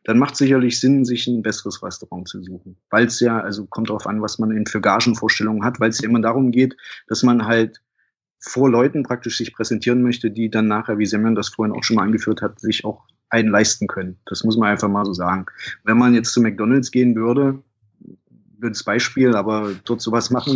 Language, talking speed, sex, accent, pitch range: German, 215 wpm, male, German, 105-120 Hz